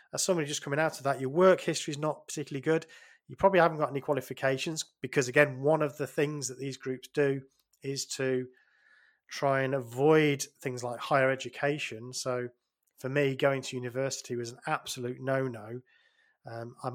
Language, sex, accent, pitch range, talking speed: English, male, British, 130-160 Hz, 175 wpm